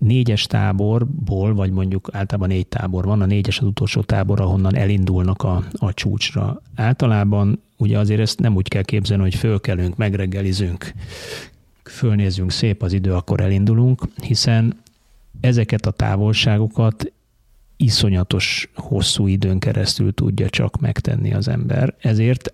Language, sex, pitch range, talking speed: Hungarian, male, 100-115 Hz, 130 wpm